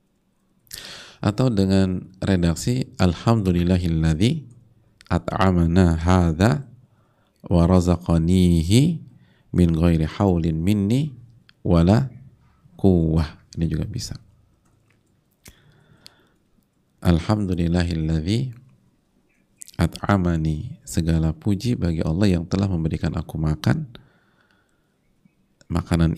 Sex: male